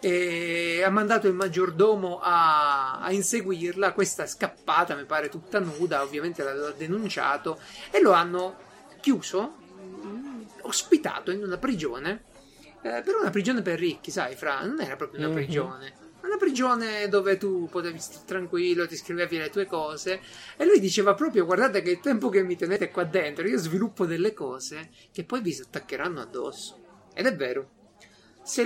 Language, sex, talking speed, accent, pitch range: Italian, male, 160 wpm, native, 155-220 Hz